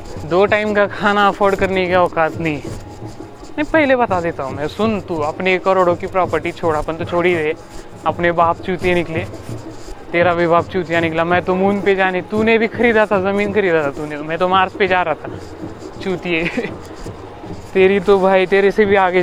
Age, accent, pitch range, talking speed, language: 30-49, native, 165-200 Hz, 150 wpm, Marathi